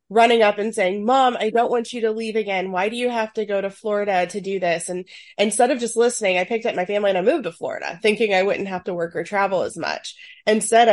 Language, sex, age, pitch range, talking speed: English, female, 20-39, 170-210 Hz, 270 wpm